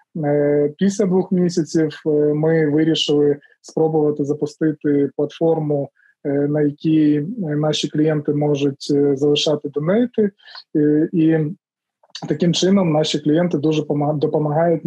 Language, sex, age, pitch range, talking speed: Ukrainian, male, 20-39, 150-170 Hz, 90 wpm